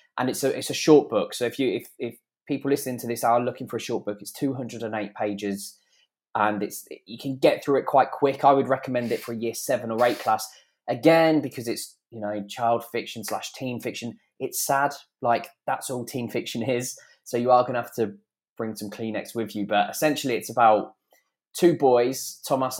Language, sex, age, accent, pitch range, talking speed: English, male, 20-39, British, 105-130 Hz, 210 wpm